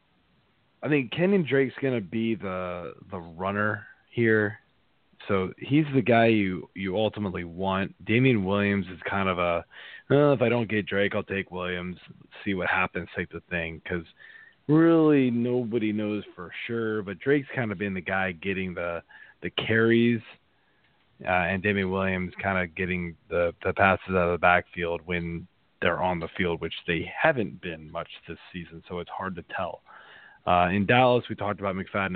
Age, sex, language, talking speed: 30-49, male, English, 175 wpm